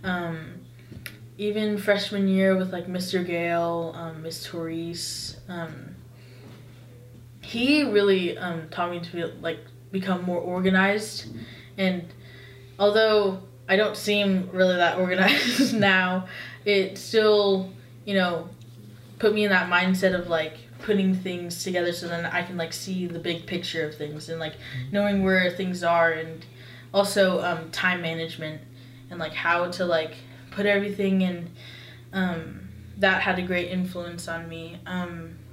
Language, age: English, 10-29